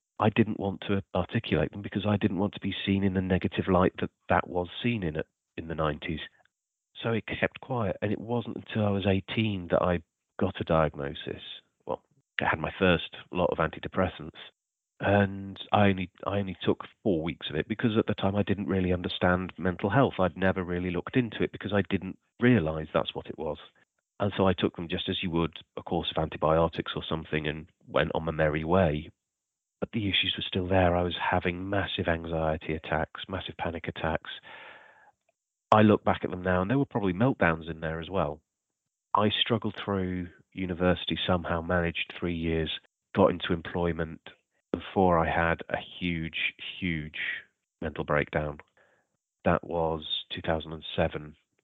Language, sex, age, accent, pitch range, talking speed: English, male, 40-59, British, 80-100 Hz, 180 wpm